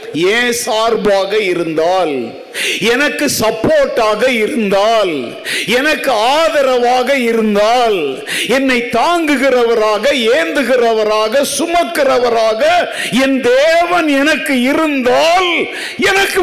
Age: 50-69